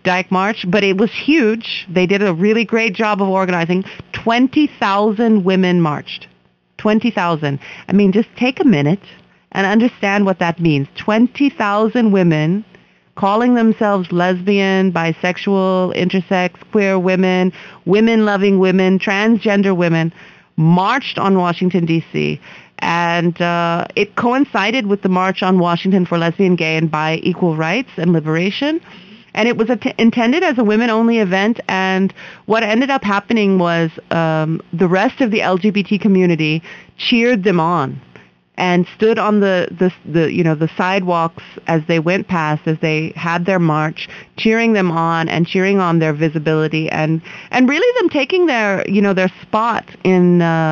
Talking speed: 150 wpm